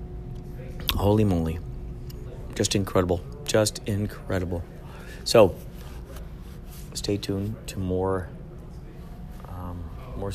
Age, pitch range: 40-59, 85-105 Hz